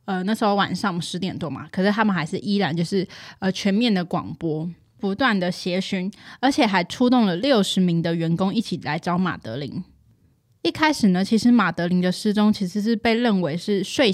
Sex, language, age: female, Chinese, 20-39